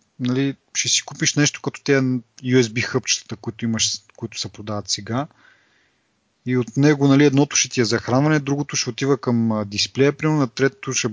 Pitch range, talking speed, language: 115-140 Hz, 175 wpm, Bulgarian